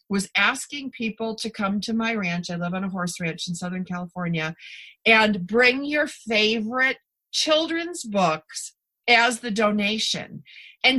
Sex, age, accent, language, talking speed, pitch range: female, 40-59, American, English, 145 wpm, 215-290 Hz